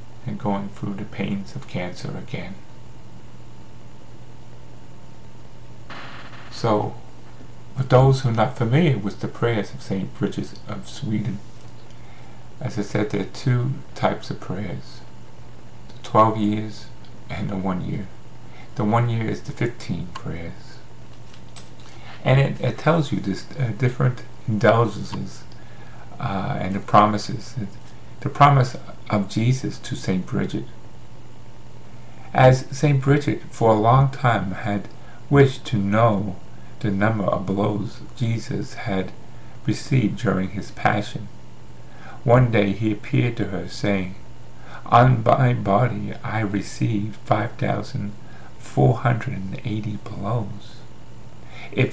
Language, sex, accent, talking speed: English, male, American, 120 wpm